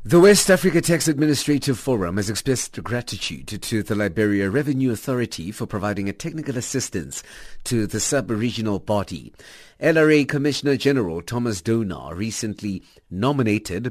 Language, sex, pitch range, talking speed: English, male, 100-130 Hz, 130 wpm